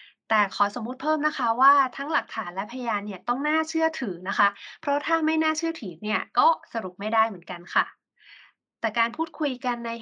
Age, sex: 20-39, female